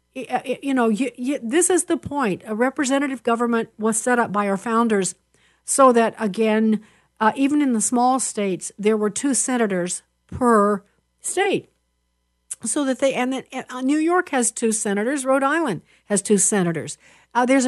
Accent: American